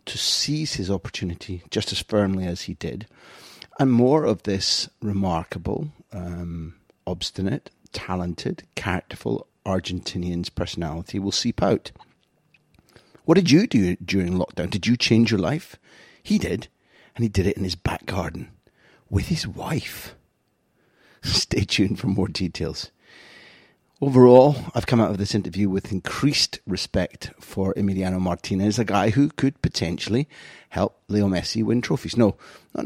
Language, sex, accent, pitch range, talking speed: English, male, British, 90-110 Hz, 140 wpm